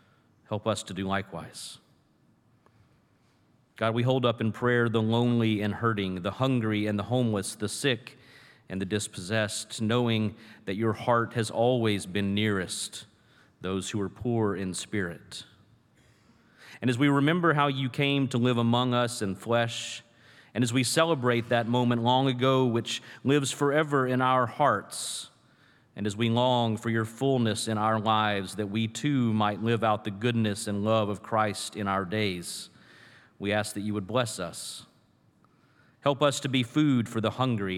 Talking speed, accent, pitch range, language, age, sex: 170 wpm, American, 105-125 Hz, English, 40-59, male